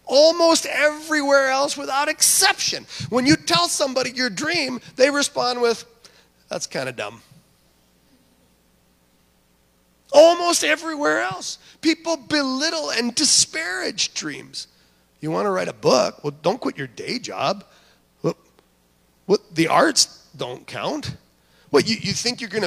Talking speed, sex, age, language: 130 wpm, male, 30-49, English